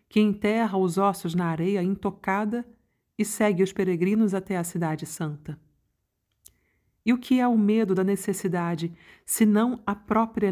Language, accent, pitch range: Portuguese, Brazilian, 170-215 Hz